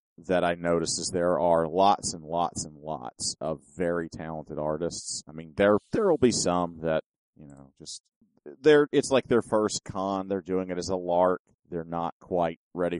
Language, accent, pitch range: English, American, 80-95 Hz